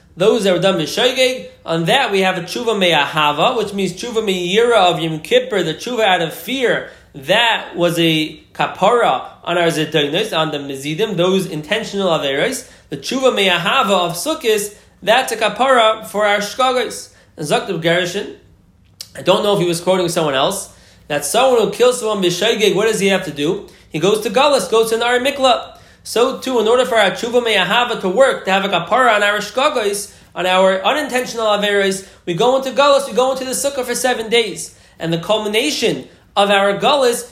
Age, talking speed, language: 20-39, 190 wpm, English